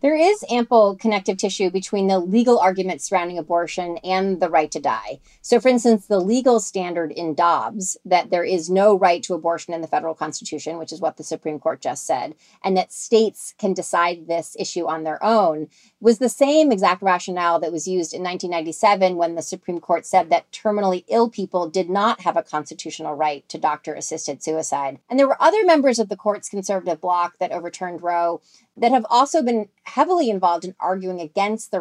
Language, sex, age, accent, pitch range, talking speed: English, female, 30-49, American, 170-215 Hz, 195 wpm